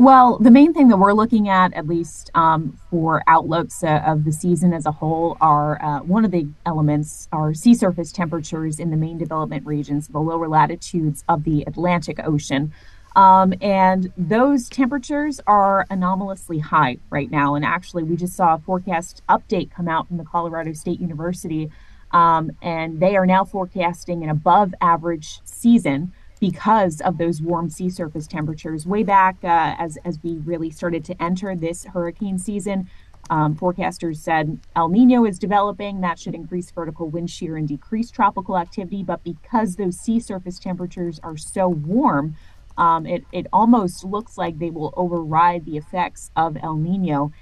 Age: 20-39